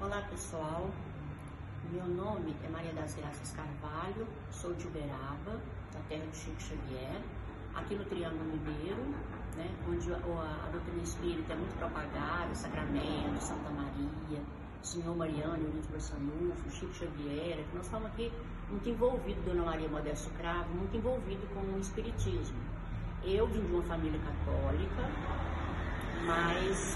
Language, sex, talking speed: Portuguese, female, 150 wpm